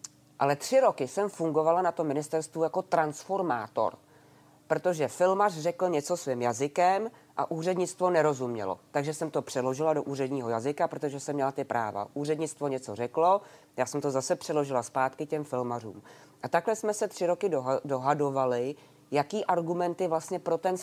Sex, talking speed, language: female, 160 wpm, Czech